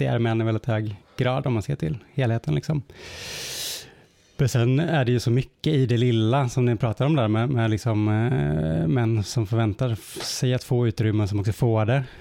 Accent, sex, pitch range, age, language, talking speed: Norwegian, male, 110-140 Hz, 20-39, English, 210 wpm